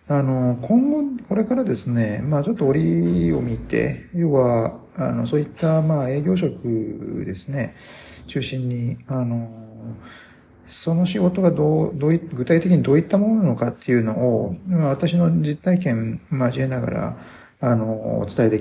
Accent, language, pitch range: native, Japanese, 115-170 Hz